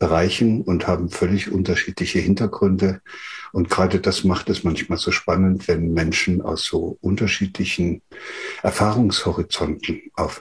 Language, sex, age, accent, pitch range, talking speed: German, male, 60-79, German, 95-110 Hz, 120 wpm